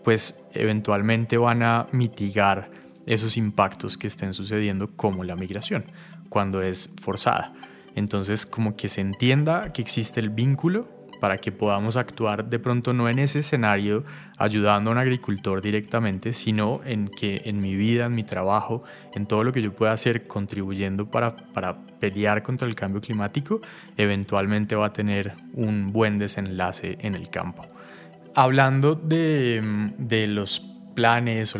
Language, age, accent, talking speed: Spanish, 20-39, Colombian, 150 wpm